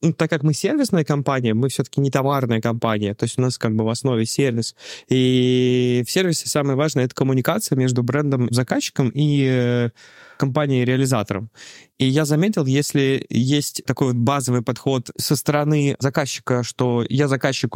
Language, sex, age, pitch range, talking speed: Russian, male, 20-39, 120-140 Hz, 155 wpm